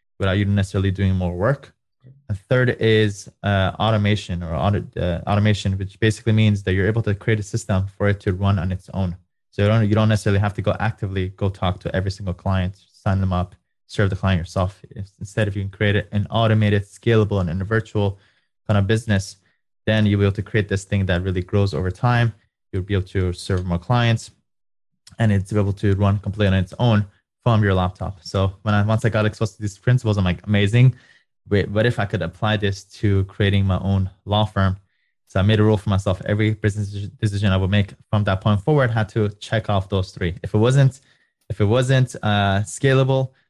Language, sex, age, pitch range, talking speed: English, male, 20-39, 95-110 Hz, 220 wpm